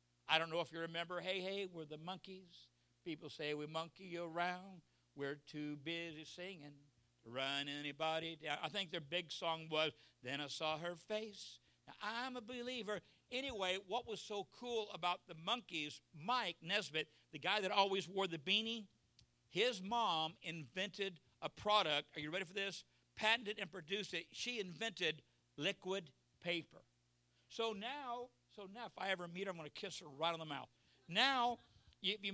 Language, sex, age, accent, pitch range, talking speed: English, male, 60-79, American, 160-200 Hz, 180 wpm